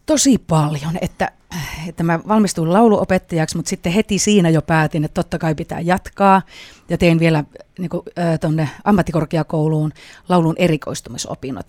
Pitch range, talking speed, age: 160-190 Hz, 130 wpm, 30-49